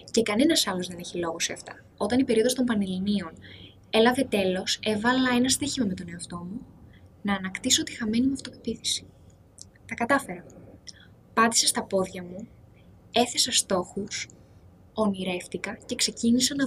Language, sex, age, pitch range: Greek, female, 10-29, 190-250 Hz